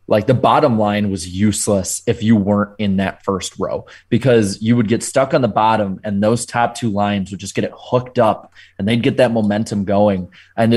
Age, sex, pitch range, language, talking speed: 20-39, male, 100-130 Hz, English, 215 wpm